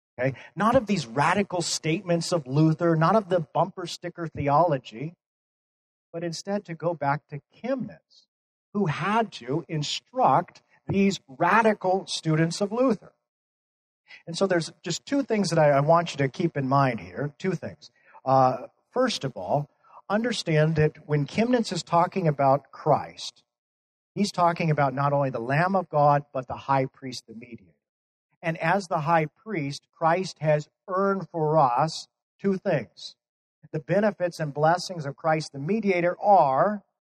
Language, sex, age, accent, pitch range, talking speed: English, male, 50-69, American, 140-180 Hz, 155 wpm